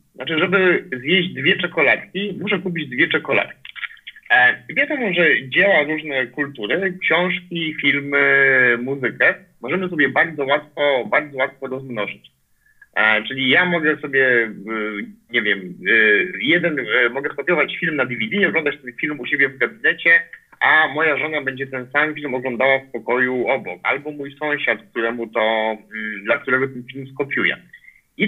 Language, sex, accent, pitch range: Polish, male, native, 135-175 Hz